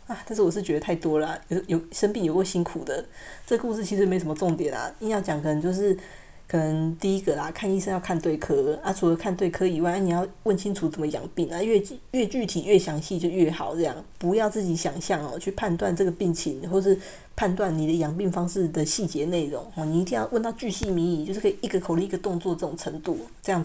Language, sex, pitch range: Chinese, female, 170-210 Hz